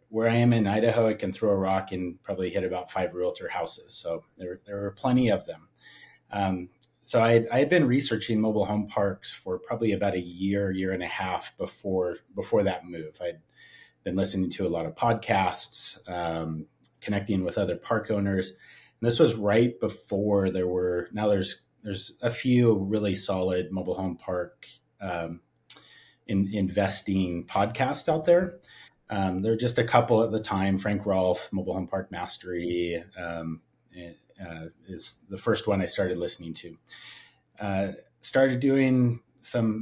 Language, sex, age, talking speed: English, male, 30-49, 165 wpm